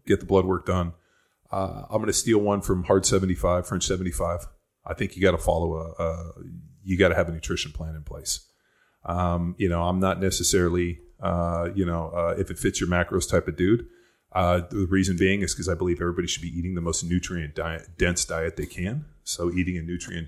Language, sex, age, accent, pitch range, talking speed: English, male, 30-49, American, 85-95 Hz, 220 wpm